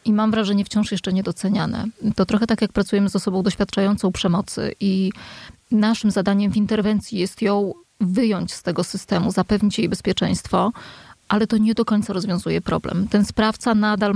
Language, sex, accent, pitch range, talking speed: Polish, female, native, 195-225 Hz, 165 wpm